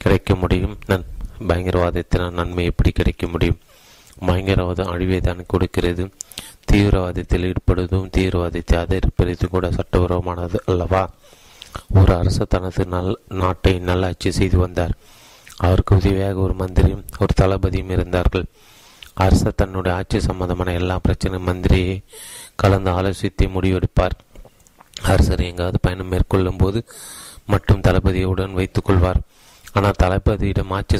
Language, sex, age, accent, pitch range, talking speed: Tamil, male, 30-49, native, 90-95 Hz, 105 wpm